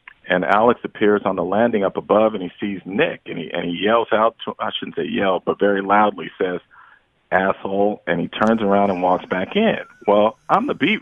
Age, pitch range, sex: 40-59, 100-120 Hz, male